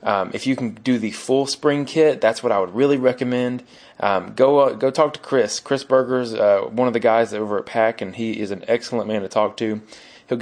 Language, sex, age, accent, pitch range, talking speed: English, male, 20-39, American, 105-125 Hz, 250 wpm